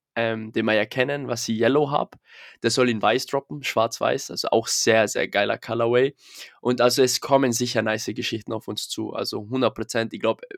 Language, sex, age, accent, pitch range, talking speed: German, male, 20-39, German, 110-125 Hz, 200 wpm